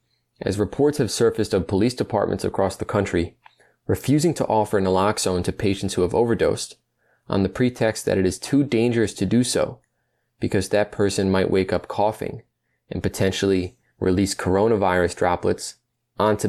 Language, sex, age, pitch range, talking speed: English, male, 20-39, 95-120 Hz, 155 wpm